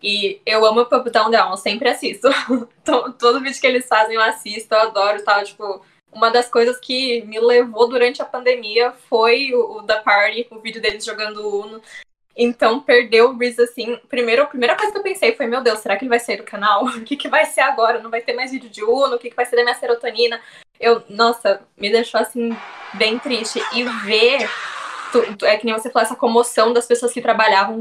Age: 10-29